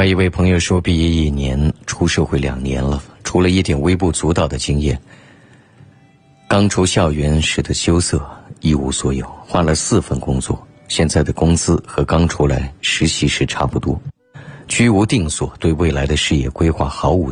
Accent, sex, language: native, male, Chinese